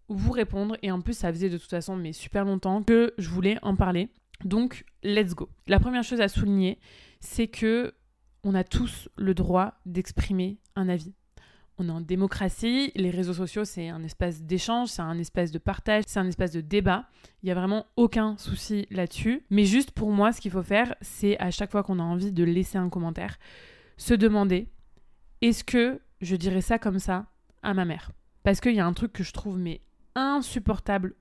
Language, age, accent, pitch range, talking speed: French, 20-39, French, 185-220 Hz, 205 wpm